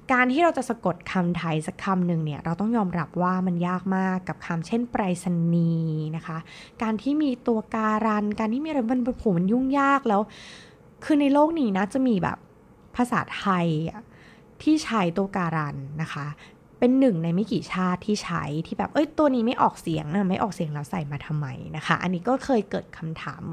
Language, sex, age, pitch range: Thai, female, 20-39, 165-230 Hz